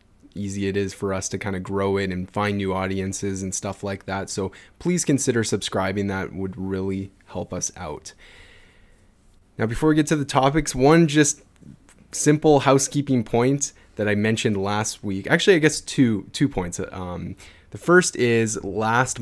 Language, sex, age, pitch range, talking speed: English, male, 20-39, 95-120 Hz, 175 wpm